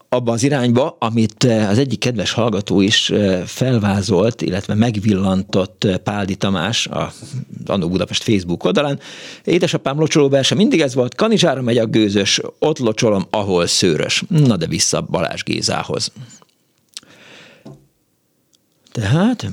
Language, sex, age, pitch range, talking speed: Hungarian, male, 50-69, 100-135 Hz, 120 wpm